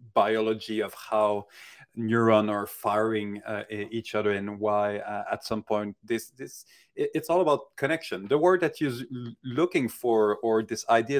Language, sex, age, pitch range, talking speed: English, male, 30-49, 105-125 Hz, 160 wpm